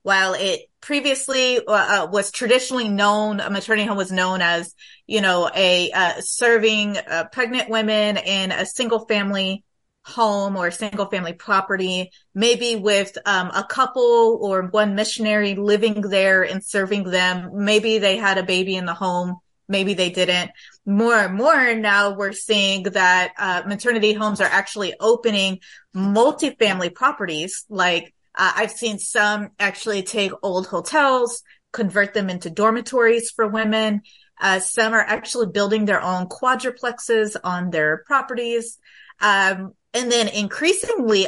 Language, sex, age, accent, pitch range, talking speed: English, female, 30-49, American, 190-225 Hz, 145 wpm